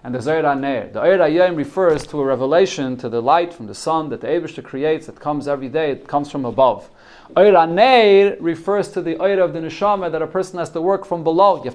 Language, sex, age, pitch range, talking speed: English, male, 30-49, 140-180 Hz, 235 wpm